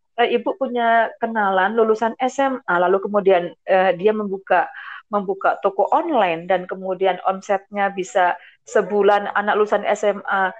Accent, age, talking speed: native, 30-49, 120 wpm